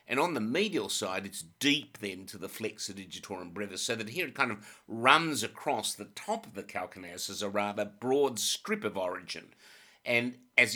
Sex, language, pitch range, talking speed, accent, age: male, English, 95-115 Hz, 195 wpm, Australian, 60-79